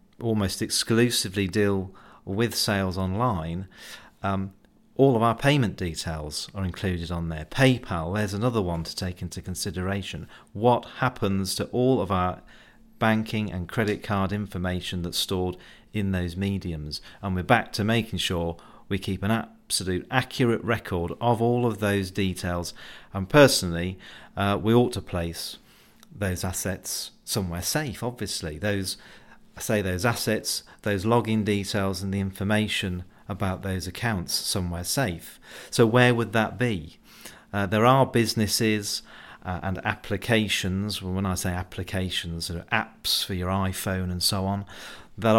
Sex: male